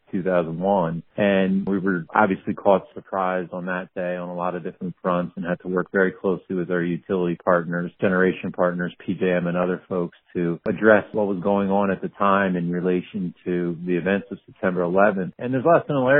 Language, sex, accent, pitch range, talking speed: English, male, American, 90-105 Hz, 195 wpm